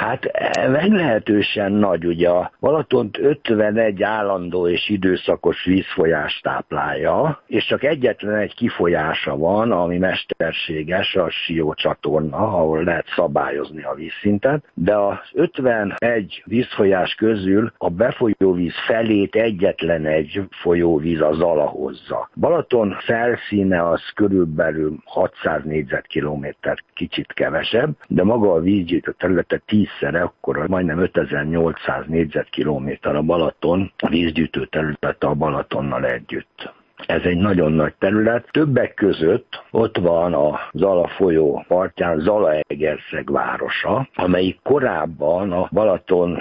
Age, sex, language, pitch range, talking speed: 60-79, male, Hungarian, 80-100 Hz, 110 wpm